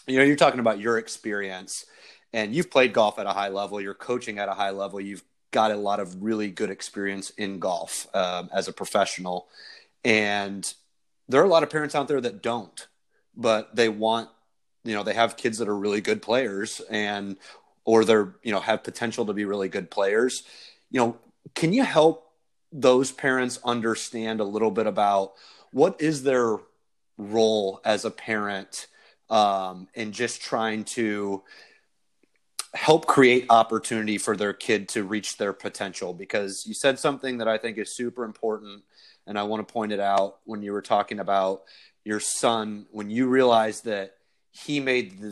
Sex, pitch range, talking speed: male, 100-120 Hz, 180 wpm